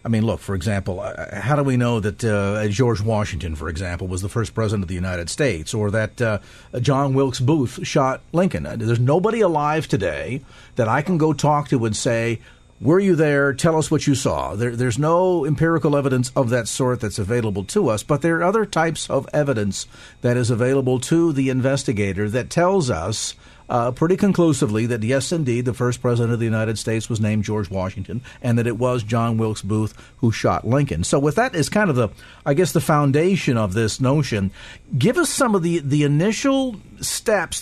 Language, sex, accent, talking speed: English, male, American, 205 wpm